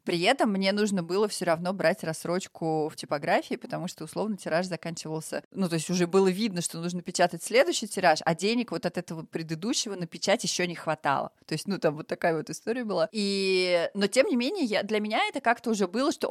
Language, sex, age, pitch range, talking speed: Russian, female, 30-49, 160-200 Hz, 215 wpm